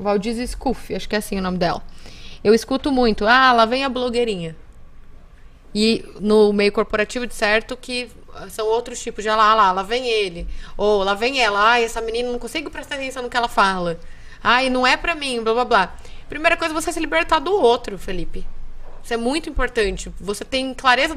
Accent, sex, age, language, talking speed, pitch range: Brazilian, female, 20-39, Portuguese, 205 wpm, 205-260 Hz